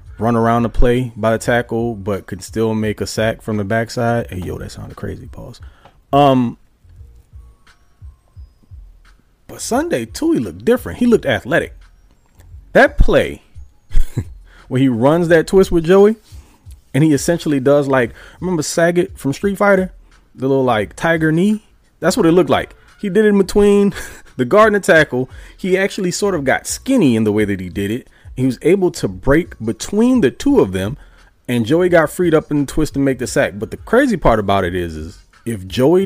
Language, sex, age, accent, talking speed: English, male, 30-49, American, 195 wpm